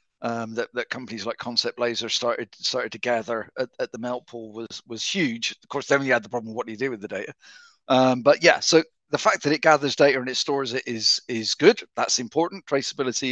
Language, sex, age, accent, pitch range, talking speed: English, male, 50-69, British, 120-150 Hz, 245 wpm